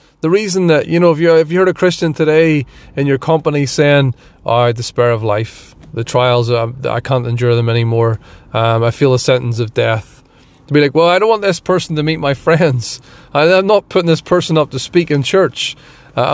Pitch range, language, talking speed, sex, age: 125-170 Hz, English, 230 wpm, male, 30-49